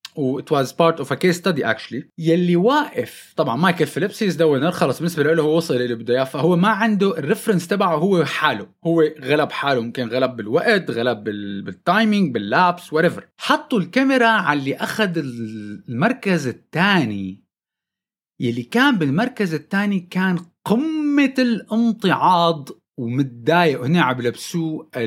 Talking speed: 135 wpm